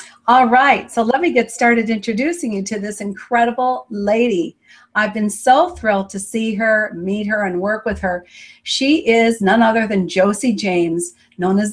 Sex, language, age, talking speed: female, English, 50-69, 180 wpm